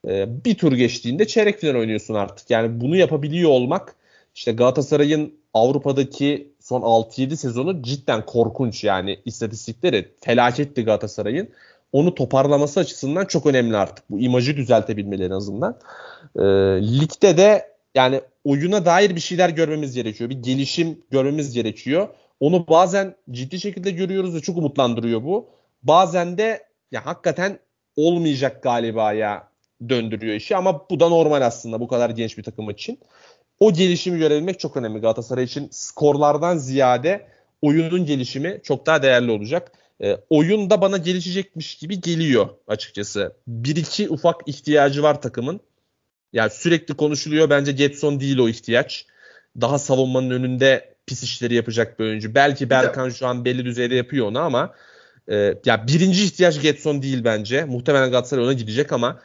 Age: 30-49